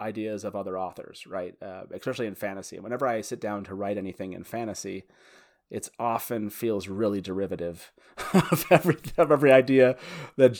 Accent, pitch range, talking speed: American, 100-125 Hz, 170 wpm